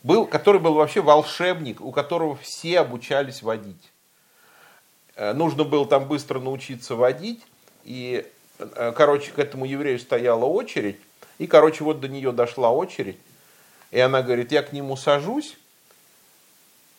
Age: 50-69